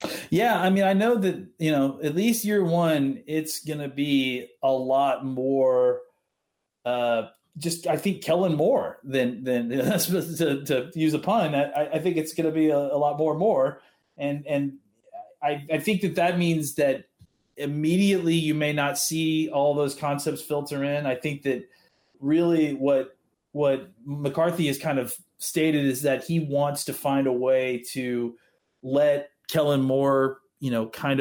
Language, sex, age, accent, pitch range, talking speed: English, male, 30-49, American, 125-160 Hz, 175 wpm